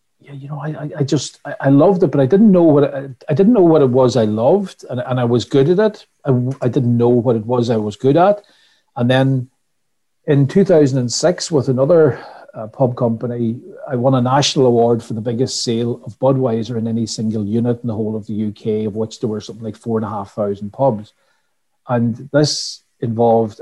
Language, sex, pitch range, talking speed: English, male, 115-145 Hz, 215 wpm